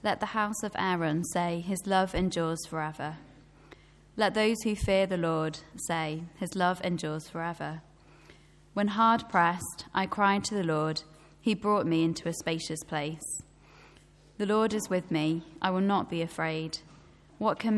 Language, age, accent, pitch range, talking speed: English, 20-39, British, 160-205 Hz, 160 wpm